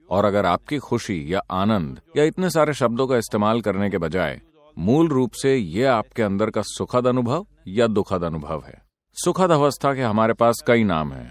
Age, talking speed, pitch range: 40-59, 190 wpm, 95-140 Hz